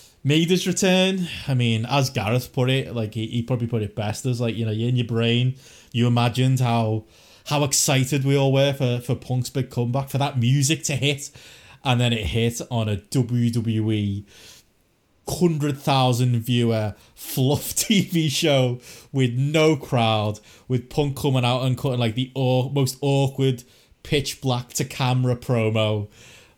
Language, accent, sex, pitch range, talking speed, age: English, British, male, 115-135 Hz, 155 wpm, 20-39